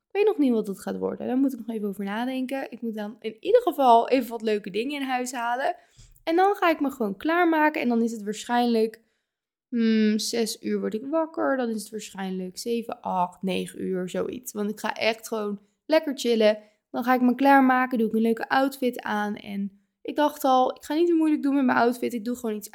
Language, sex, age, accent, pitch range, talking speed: Dutch, female, 20-39, Dutch, 215-275 Hz, 235 wpm